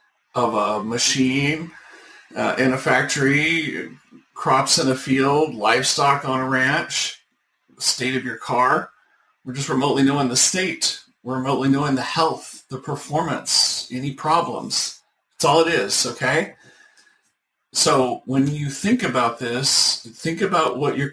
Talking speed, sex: 140 wpm, male